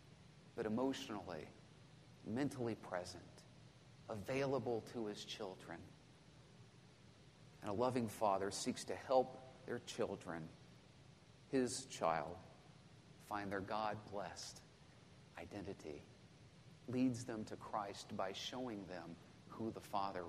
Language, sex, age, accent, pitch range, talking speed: English, male, 40-59, American, 105-135 Hz, 95 wpm